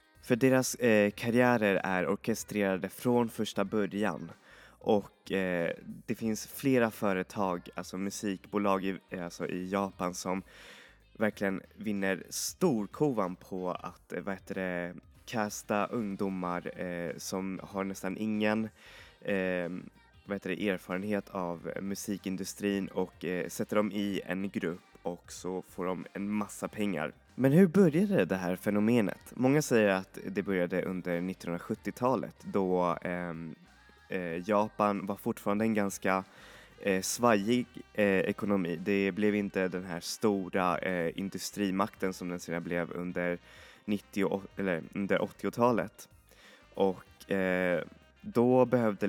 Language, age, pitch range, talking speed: Swedish, 20-39, 90-105 Hz, 125 wpm